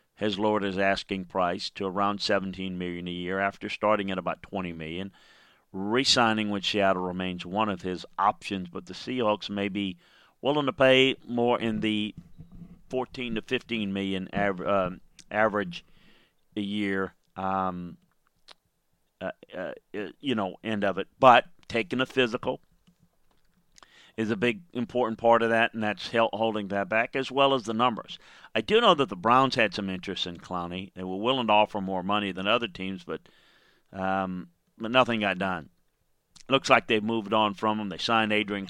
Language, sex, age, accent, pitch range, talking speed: English, male, 40-59, American, 95-115 Hz, 175 wpm